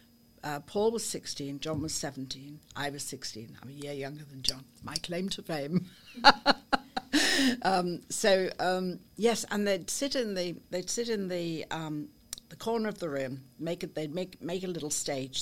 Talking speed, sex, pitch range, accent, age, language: 185 wpm, female, 140-185 Hz, British, 60-79, English